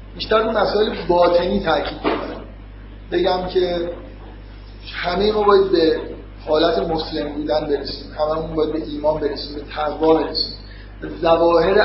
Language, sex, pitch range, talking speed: Persian, male, 110-185 Hz, 125 wpm